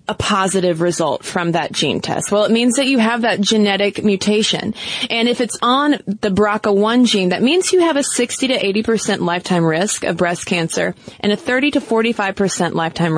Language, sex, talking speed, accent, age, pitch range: English, female, 190 wpm, American, 20-39, 180-225 Hz